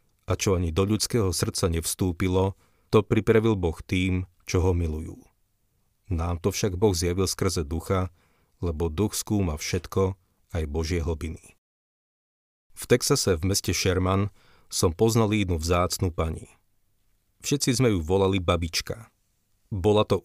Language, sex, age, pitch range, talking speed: Slovak, male, 40-59, 90-110 Hz, 135 wpm